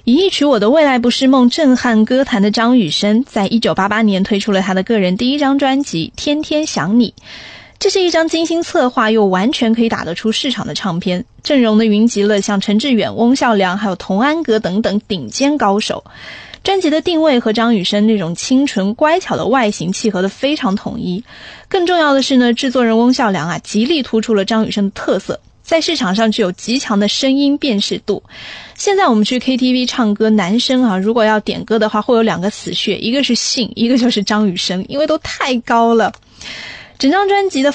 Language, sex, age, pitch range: Chinese, female, 20-39, 205-275 Hz